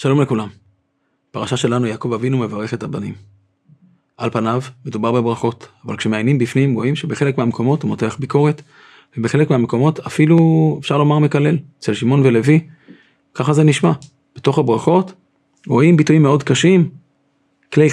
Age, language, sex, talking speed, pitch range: 30-49, Hebrew, male, 135 wpm, 125-165 Hz